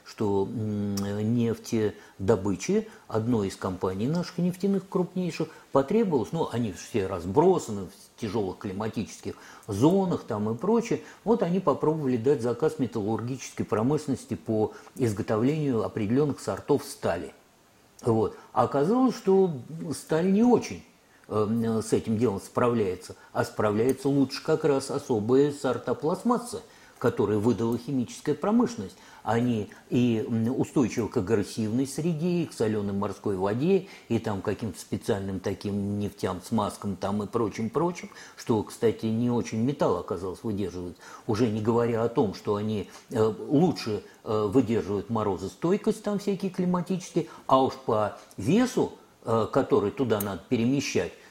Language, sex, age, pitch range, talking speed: Russian, male, 50-69, 105-165 Hz, 120 wpm